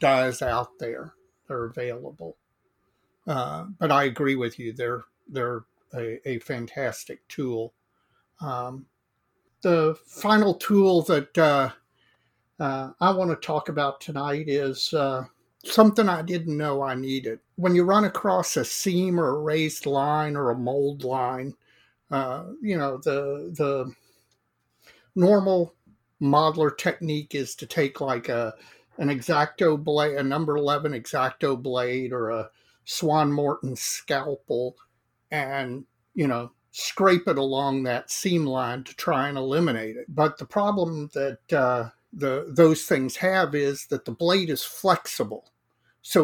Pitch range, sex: 125-155 Hz, male